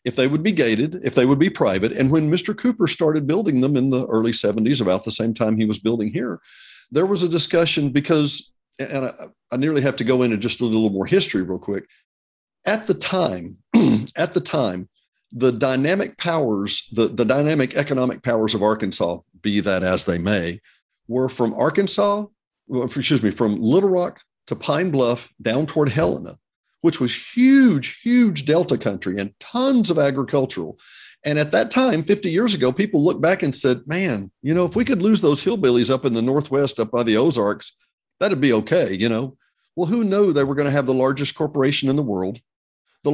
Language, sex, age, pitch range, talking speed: English, male, 50-69, 110-165 Hz, 200 wpm